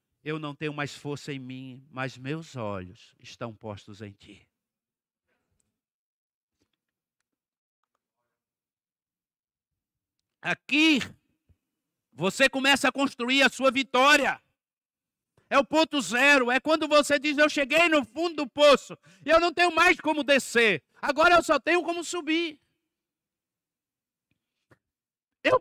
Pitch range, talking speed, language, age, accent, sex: 220-295 Hz, 115 wpm, Portuguese, 60-79, Brazilian, male